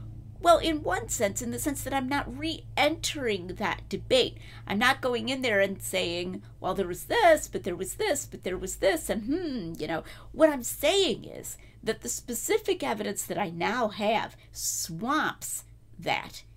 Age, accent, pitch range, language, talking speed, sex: 40-59, American, 160-265 Hz, English, 180 wpm, female